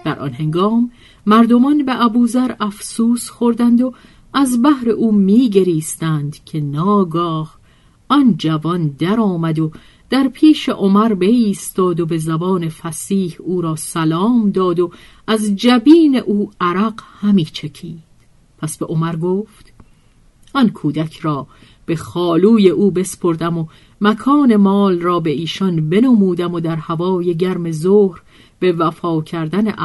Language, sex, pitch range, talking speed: Persian, female, 160-210 Hz, 135 wpm